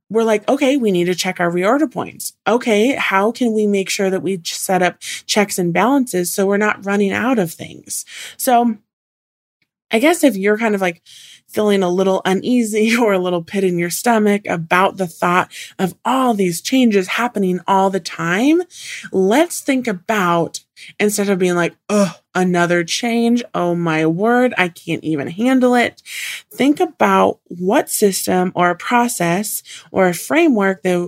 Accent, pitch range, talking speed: American, 180-240 Hz, 170 wpm